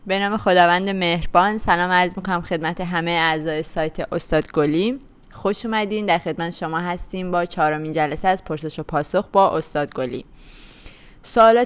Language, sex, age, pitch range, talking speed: Persian, female, 20-39, 155-195 Hz, 155 wpm